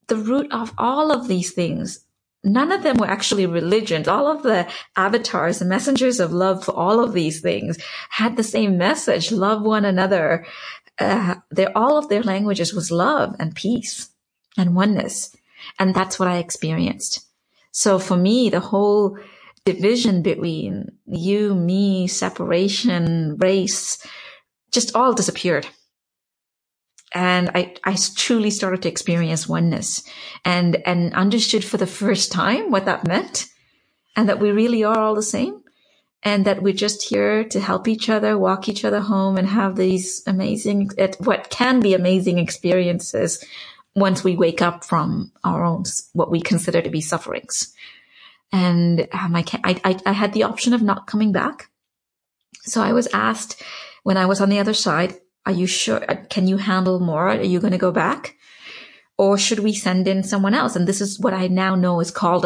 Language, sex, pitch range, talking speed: English, female, 180-215 Hz, 170 wpm